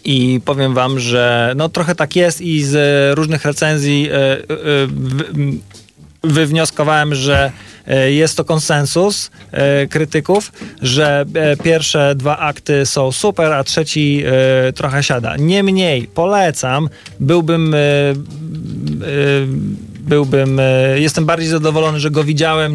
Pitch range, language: 130-155 Hz, Polish